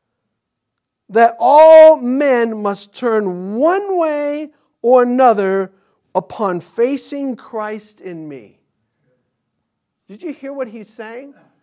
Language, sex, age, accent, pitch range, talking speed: English, male, 50-69, American, 175-260 Hz, 105 wpm